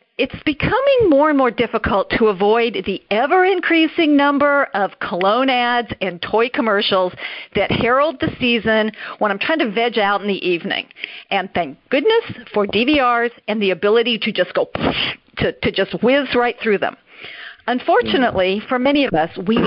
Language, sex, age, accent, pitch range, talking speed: English, female, 50-69, American, 195-275 Hz, 165 wpm